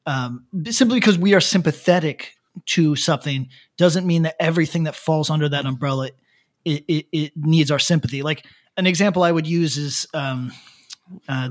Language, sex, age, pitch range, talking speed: English, male, 30-49, 140-175 Hz, 165 wpm